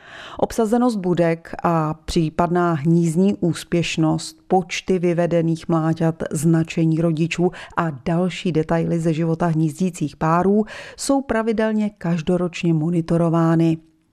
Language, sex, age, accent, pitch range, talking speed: Czech, female, 30-49, native, 160-205 Hz, 95 wpm